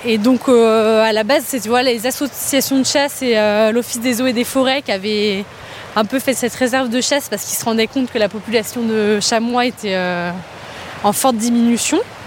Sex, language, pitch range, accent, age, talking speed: female, French, 220-260 Hz, French, 20-39, 210 wpm